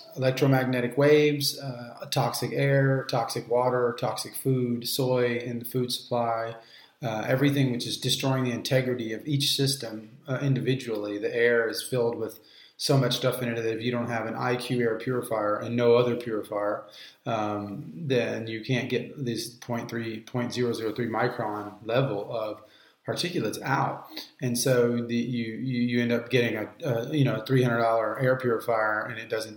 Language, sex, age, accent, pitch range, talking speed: English, male, 30-49, American, 110-125 Hz, 160 wpm